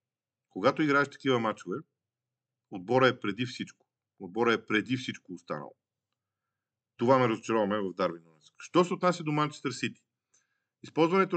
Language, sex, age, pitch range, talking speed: Bulgarian, male, 40-59, 110-135 Hz, 130 wpm